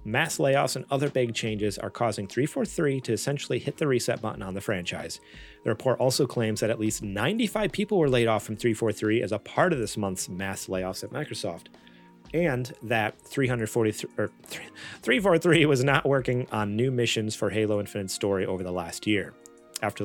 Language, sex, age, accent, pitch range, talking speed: English, male, 30-49, American, 105-140 Hz, 185 wpm